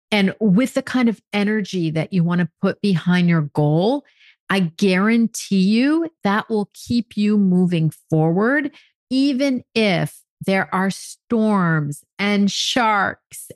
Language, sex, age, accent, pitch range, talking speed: English, female, 40-59, American, 155-200 Hz, 135 wpm